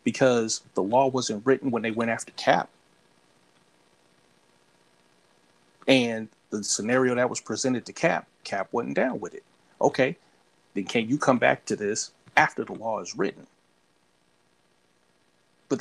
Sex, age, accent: male, 40-59, American